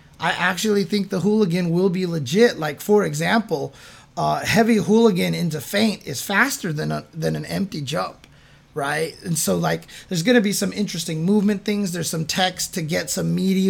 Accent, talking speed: American, 190 wpm